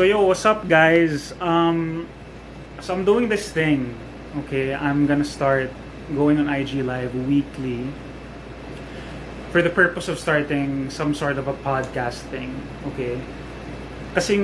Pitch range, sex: 130-155 Hz, male